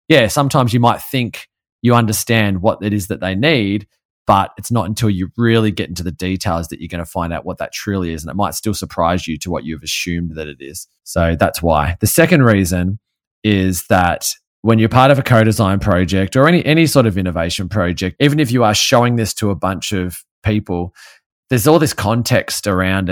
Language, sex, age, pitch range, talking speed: English, male, 20-39, 90-115 Hz, 220 wpm